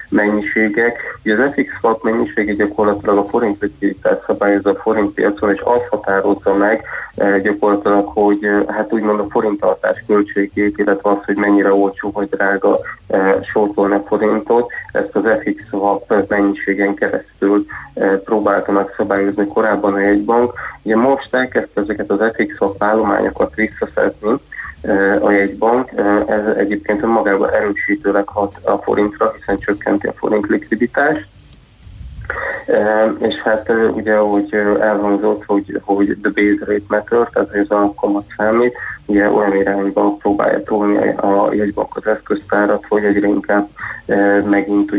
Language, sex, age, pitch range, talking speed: Hungarian, male, 20-39, 100-105 Hz, 125 wpm